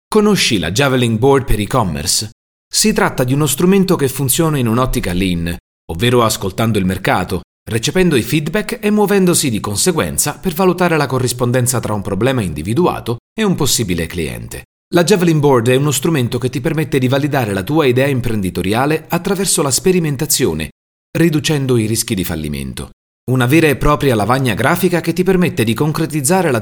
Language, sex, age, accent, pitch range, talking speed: Italian, male, 40-59, native, 95-155 Hz, 165 wpm